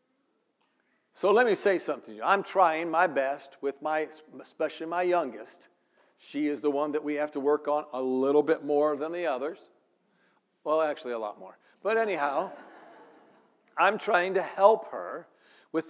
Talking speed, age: 175 wpm, 50-69